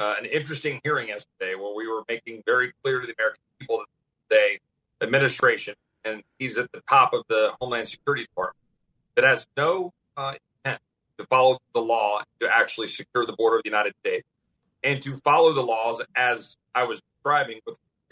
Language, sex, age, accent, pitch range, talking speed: English, male, 40-59, American, 140-230 Hz, 185 wpm